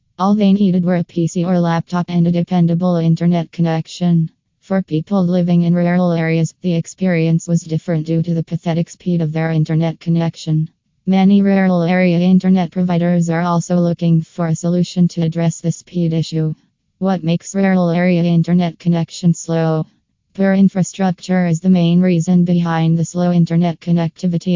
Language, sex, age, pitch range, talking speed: English, female, 20-39, 165-180 Hz, 160 wpm